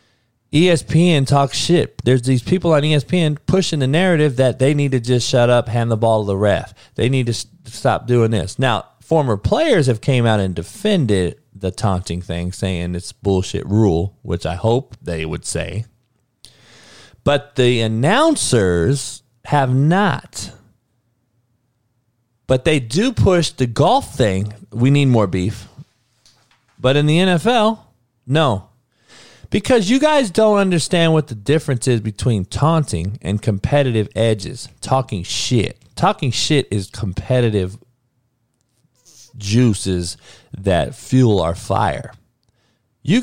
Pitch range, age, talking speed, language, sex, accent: 105-140 Hz, 40-59, 135 wpm, English, male, American